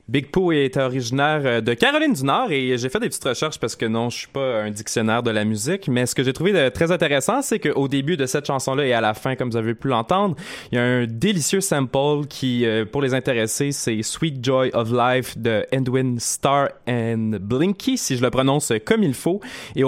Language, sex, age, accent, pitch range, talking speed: French, male, 20-39, Canadian, 120-150 Hz, 230 wpm